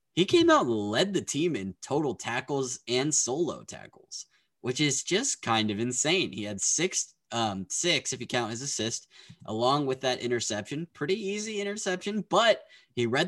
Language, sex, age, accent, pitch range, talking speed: English, male, 20-39, American, 110-150 Hz, 175 wpm